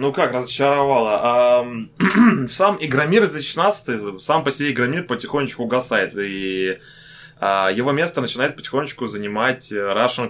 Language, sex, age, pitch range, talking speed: Russian, male, 20-39, 120-140 Hz, 115 wpm